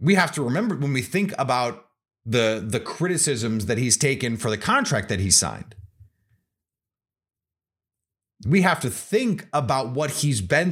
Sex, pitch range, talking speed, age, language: male, 110-170 Hz, 155 wpm, 30-49, English